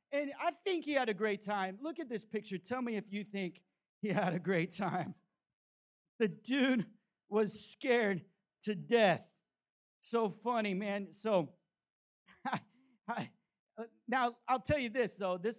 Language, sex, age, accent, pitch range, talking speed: English, male, 40-59, American, 195-255 Hz, 150 wpm